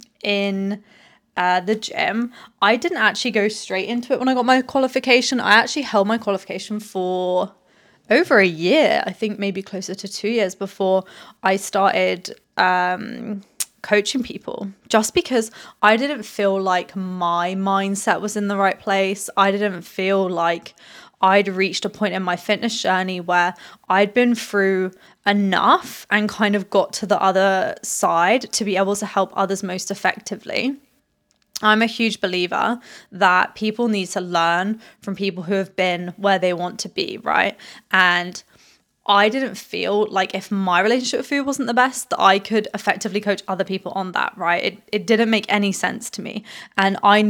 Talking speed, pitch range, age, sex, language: 175 wpm, 190-220 Hz, 20-39, female, English